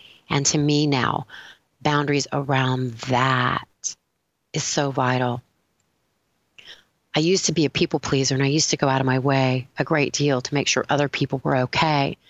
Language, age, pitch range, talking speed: English, 30-49, 130-150 Hz, 175 wpm